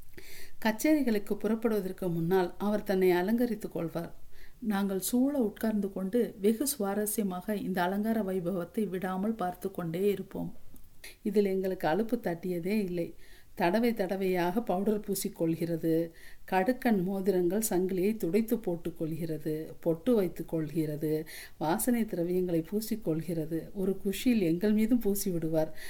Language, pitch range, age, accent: Tamil, 170-215 Hz, 50-69, native